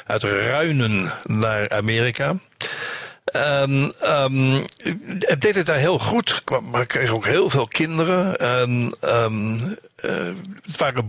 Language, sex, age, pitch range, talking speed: Dutch, male, 60-79, 120-155 Hz, 130 wpm